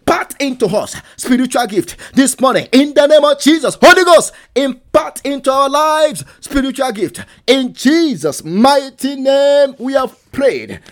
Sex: male